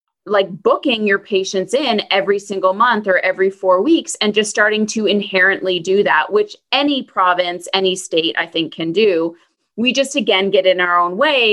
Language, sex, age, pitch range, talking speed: English, female, 30-49, 185-245 Hz, 185 wpm